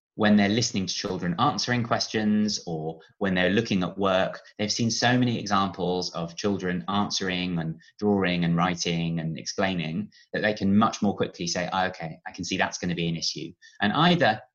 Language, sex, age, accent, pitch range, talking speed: English, male, 20-39, British, 85-110 Hz, 190 wpm